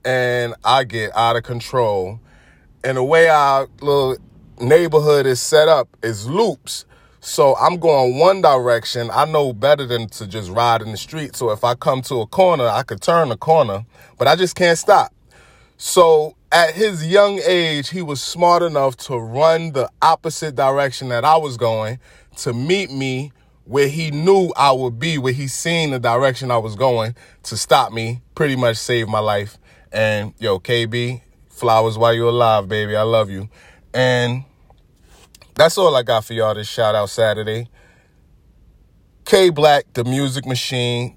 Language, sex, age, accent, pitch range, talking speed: English, male, 20-39, American, 110-145 Hz, 175 wpm